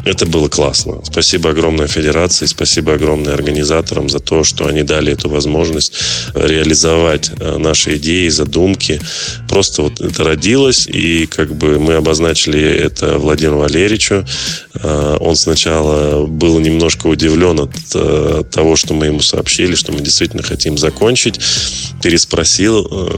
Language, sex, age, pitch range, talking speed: Russian, male, 20-39, 75-85 Hz, 125 wpm